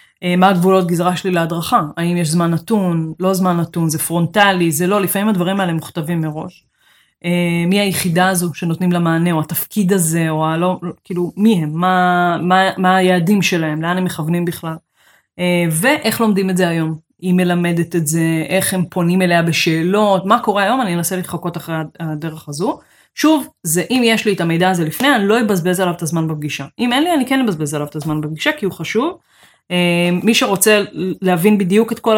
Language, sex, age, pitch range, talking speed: Hebrew, female, 20-39, 165-195 Hz, 175 wpm